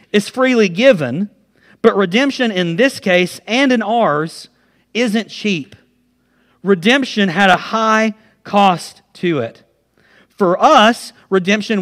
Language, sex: English, male